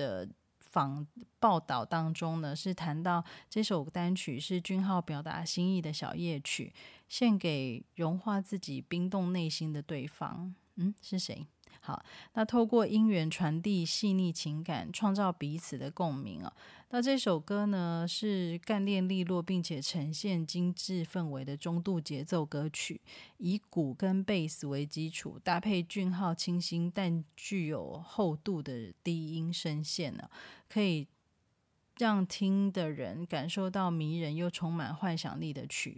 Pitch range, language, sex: 155-190 Hz, Chinese, female